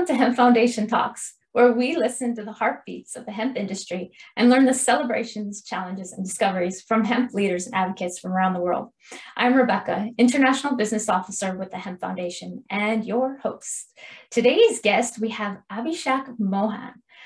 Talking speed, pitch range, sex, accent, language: 165 wpm, 205-255 Hz, female, American, English